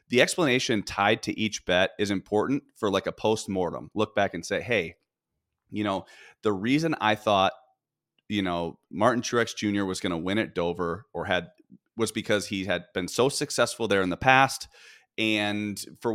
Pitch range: 95-115 Hz